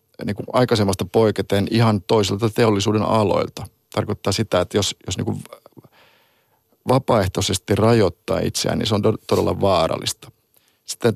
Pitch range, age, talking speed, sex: 95-115 Hz, 50-69, 120 wpm, male